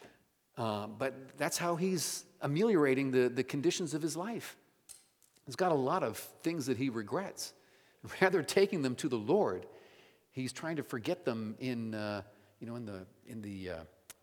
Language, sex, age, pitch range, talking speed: English, male, 50-69, 110-175 Hz, 175 wpm